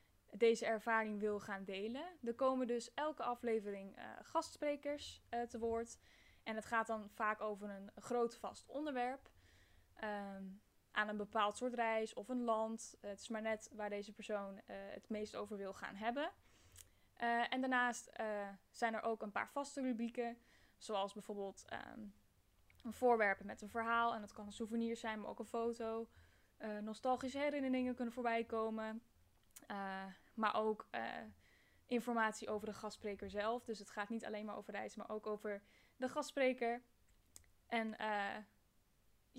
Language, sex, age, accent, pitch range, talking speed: Dutch, female, 10-29, Dutch, 210-240 Hz, 165 wpm